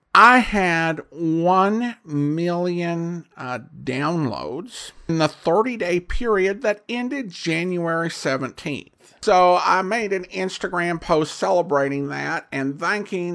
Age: 50-69